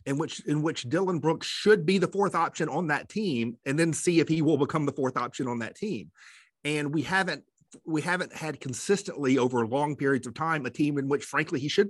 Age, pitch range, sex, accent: 30-49, 120-155 Hz, male, American